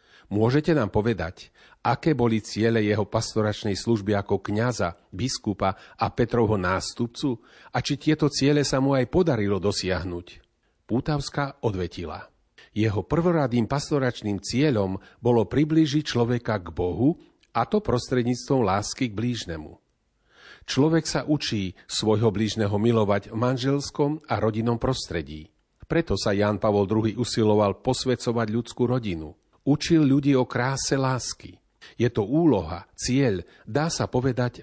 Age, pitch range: 40-59, 100-130 Hz